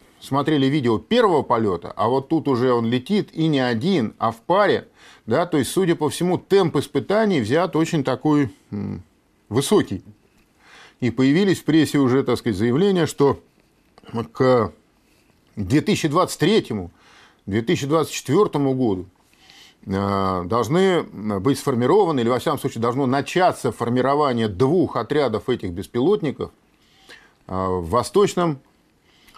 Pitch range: 105-150 Hz